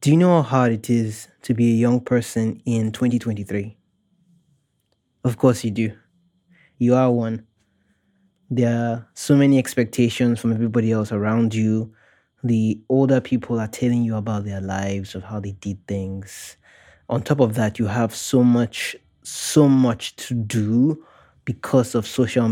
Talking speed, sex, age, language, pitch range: 160 wpm, male, 20-39, English, 110-130 Hz